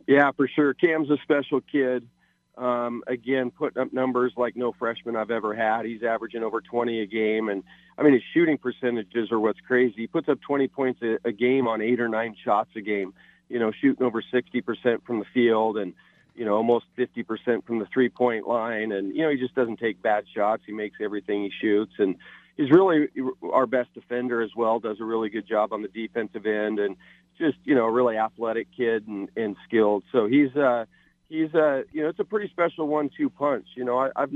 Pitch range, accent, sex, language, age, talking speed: 115-135 Hz, American, male, English, 40-59, 225 wpm